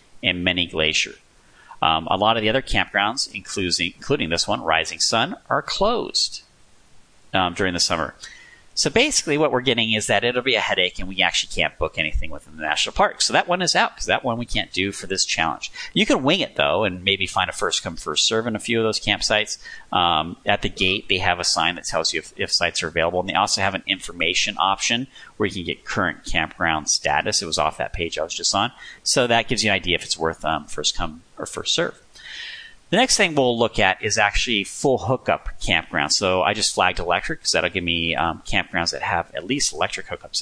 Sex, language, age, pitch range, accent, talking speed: male, English, 40-59, 95-125 Hz, American, 230 wpm